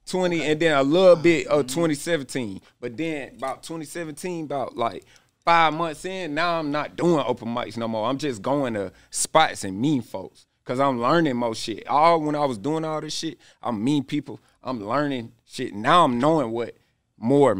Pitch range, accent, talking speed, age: 115-145 Hz, American, 195 wpm, 30-49